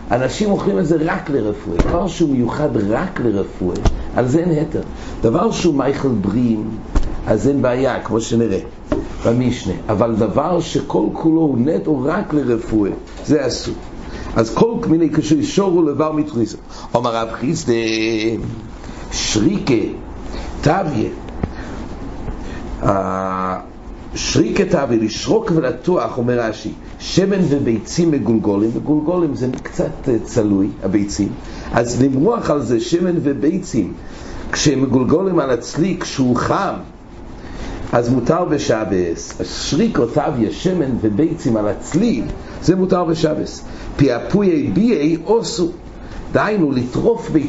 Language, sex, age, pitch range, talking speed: English, male, 60-79, 115-165 Hz, 90 wpm